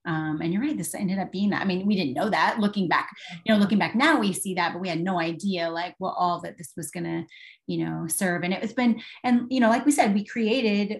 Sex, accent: female, American